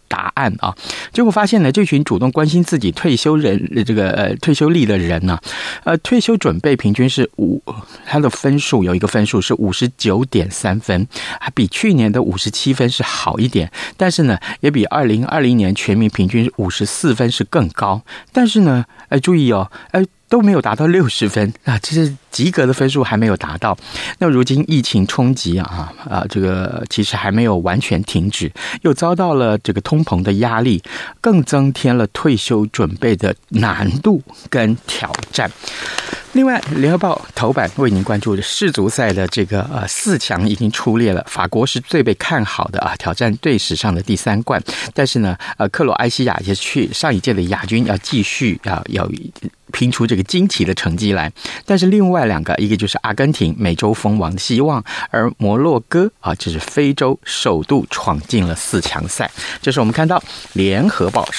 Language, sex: Chinese, male